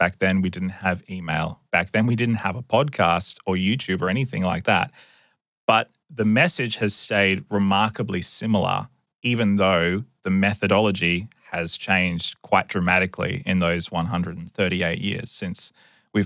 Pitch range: 90-110 Hz